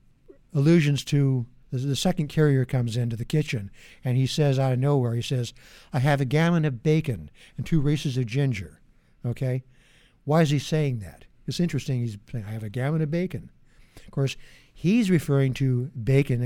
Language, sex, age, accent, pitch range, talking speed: English, male, 60-79, American, 125-150 Hz, 180 wpm